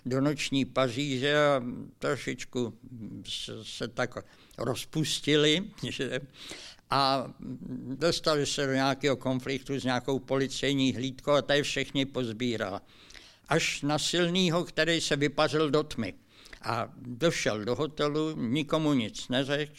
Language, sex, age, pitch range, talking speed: Czech, male, 60-79, 130-150 Hz, 120 wpm